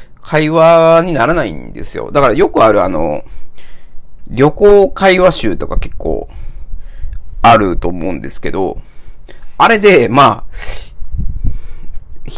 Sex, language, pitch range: male, Japanese, 105-170 Hz